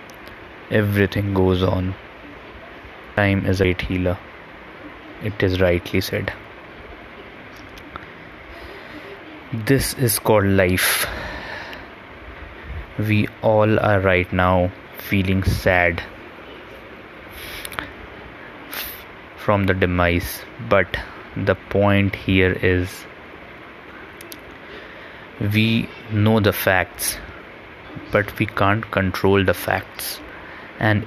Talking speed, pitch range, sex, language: 80 wpm, 95-110 Hz, male, Hindi